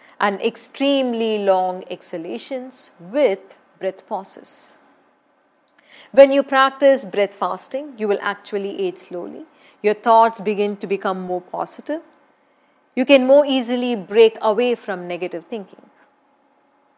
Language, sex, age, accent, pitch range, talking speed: English, female, 40-59, Indian, 190-270 Hz, 115 wpm